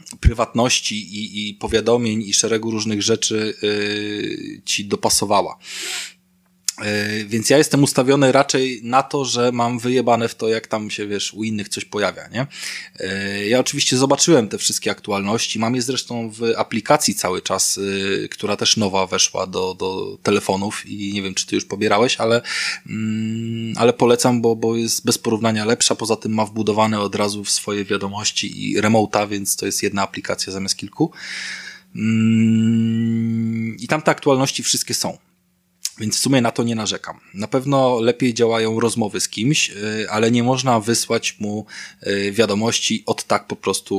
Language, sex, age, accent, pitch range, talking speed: Polish, male, 20-39, native, 100-120 Hz, 160 wpm